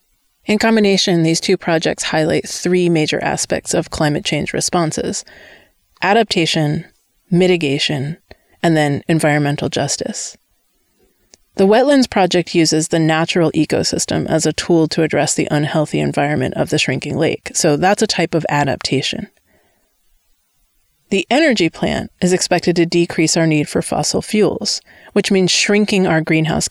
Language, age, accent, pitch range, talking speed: English, 30-49, American, 160-195 Hz, 135 wpm